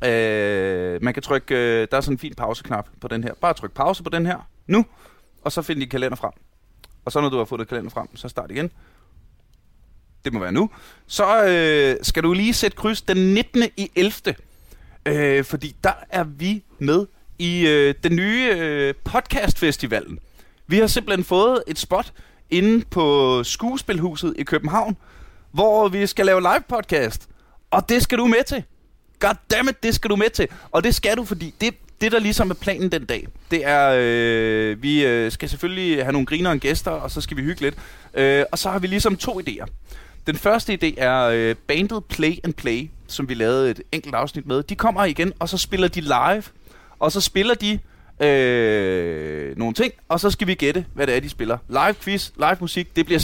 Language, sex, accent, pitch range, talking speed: Danish, male, native, 130-200 Hz, 200 wpm